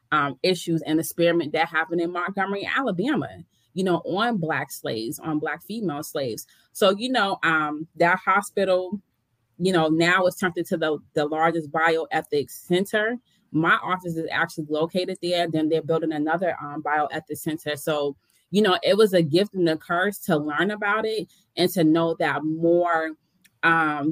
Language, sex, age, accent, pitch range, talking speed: English, female, 20-39, American, 155-185 Hz, 170 wpm